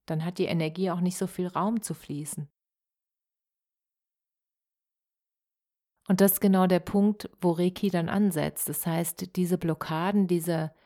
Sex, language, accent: female, German, German